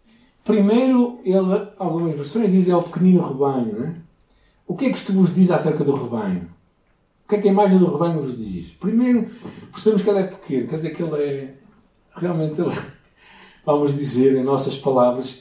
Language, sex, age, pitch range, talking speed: Portuguese, male, 50-69, 120-180 Hz, 190 wpm